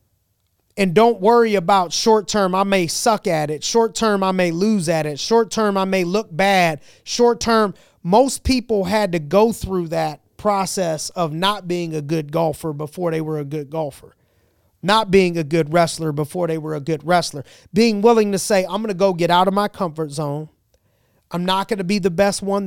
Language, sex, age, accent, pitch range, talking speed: English, male, 30-49, American, 155-200 Hz, 200 wpm